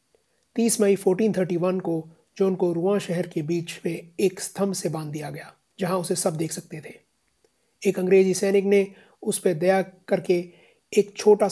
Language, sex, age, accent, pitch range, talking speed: Hindi, male, 30-49, native, 170-195 Hz, 170 wpm